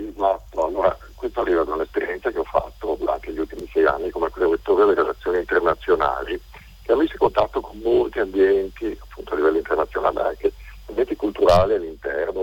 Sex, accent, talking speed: male, native, 160 wpm